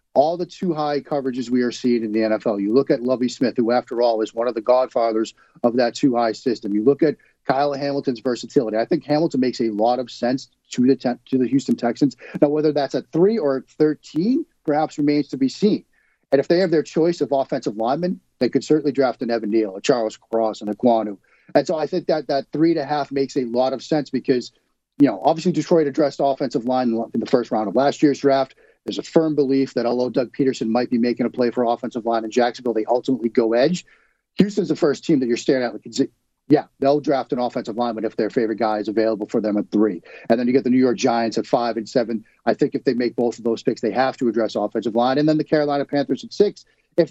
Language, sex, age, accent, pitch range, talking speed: English, male, 40-59, American, 115-145 Hz, 245 wpm